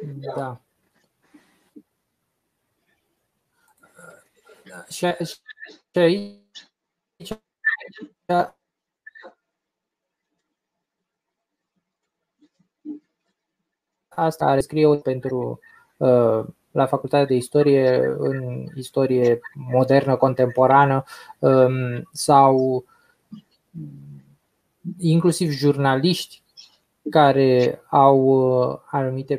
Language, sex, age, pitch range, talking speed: Romanian, male, 20-39, 125-150 Hz, 40 wpm